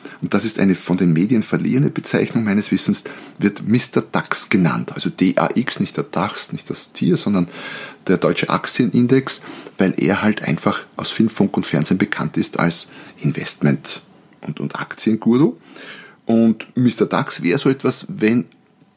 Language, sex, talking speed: German, male, 160 wpm